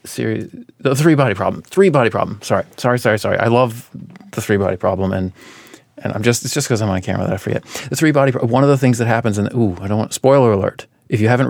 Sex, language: male, English